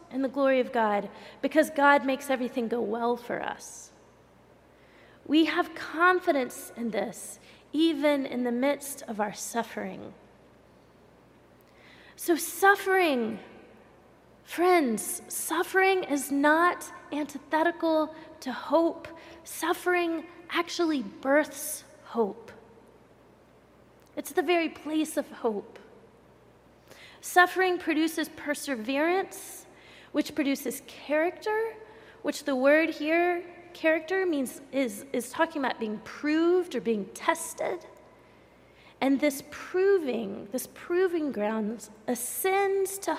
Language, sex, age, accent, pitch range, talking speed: English, female, 30-49, American, 240-335 Hz, 100 wpm